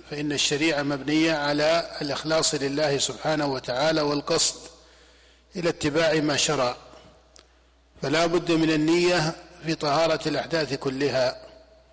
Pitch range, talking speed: 140-165 Hz, 105 wpm